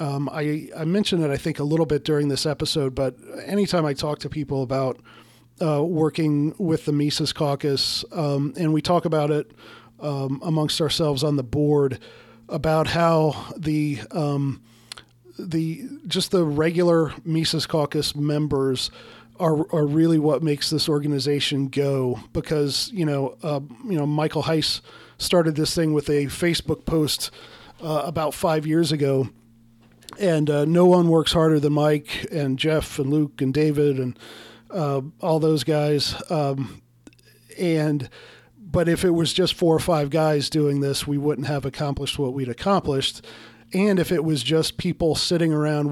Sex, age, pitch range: male, 40-59, 140-160 Hz